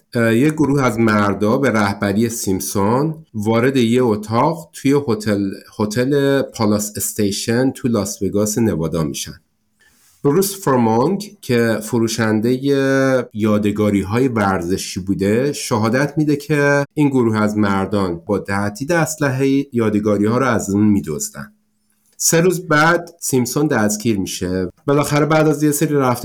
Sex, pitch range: male, 100-130 Hz